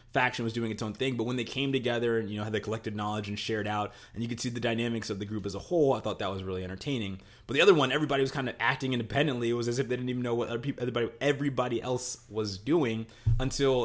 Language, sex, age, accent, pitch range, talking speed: English, male, 20-39, American, 105-130 Hz, 285 wpm